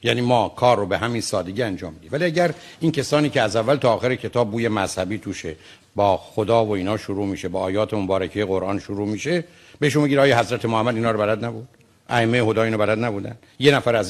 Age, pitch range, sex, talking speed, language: 60-79, 110-175 Hz, male, 220 wpm, Persian